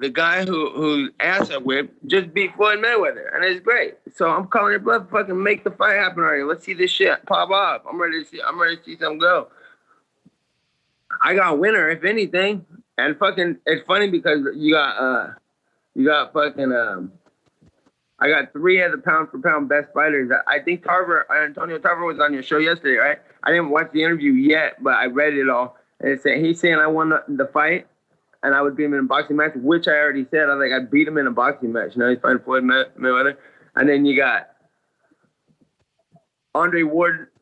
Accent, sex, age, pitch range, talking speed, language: American, male, 20-39, 145-185 Hz, 220 wpm, English